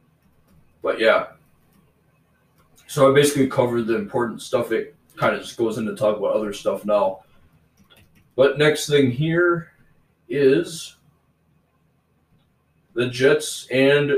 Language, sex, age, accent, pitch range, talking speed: English, male, 20-39, American, 115-135 Hz, 120 wpm